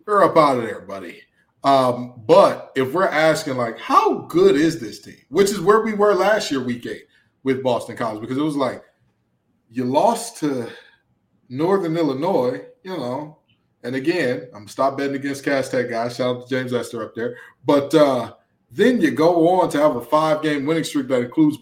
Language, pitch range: English, 115-145 Hz